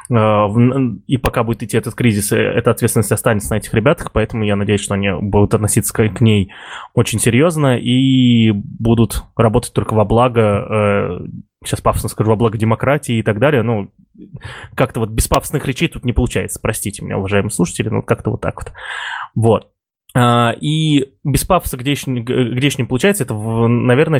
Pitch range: 110-130 Hz